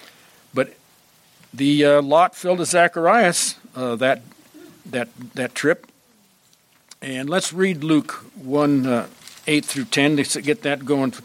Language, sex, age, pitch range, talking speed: English, male, 60-79, 125-170 Hz, 140 wpm